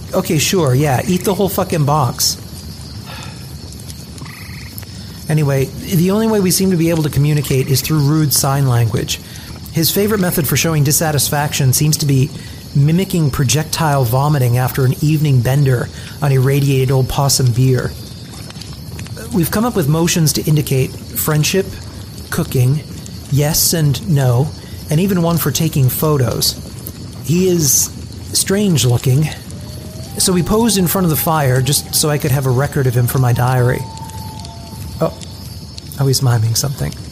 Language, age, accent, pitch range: English, 40-59, American, 125-165 Hz